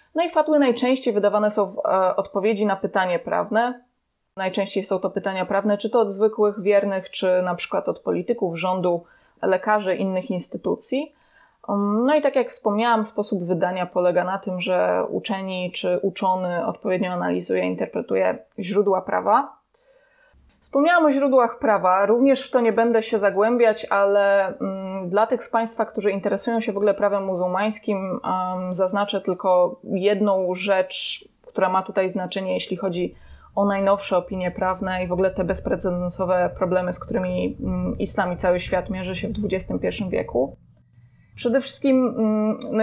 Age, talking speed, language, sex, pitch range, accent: 20-39, 150 wpm, Polish, female, 185-230 Hz, native